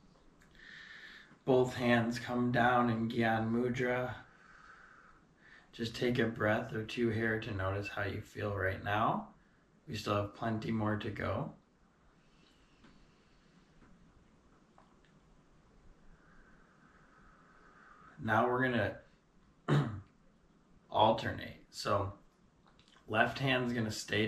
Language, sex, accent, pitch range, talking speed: English, male, American, 105-120 Hz, 95 wpm